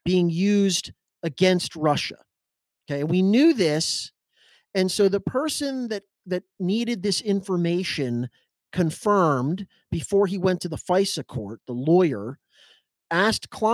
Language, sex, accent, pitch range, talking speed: English, male, American, 150-195 Hz, 120 wpm